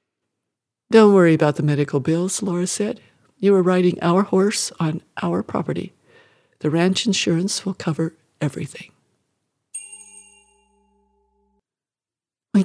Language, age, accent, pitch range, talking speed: English, 60-79, American, 160-200 Hz, 110 wpm